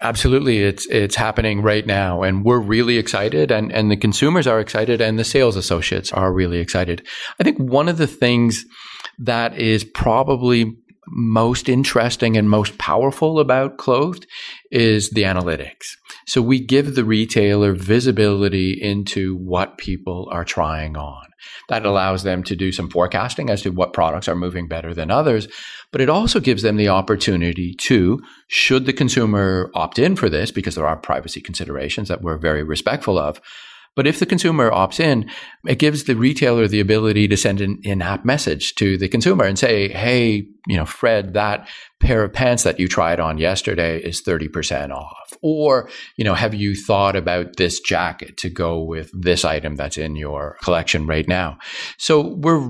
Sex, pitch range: male, 90-120 Hz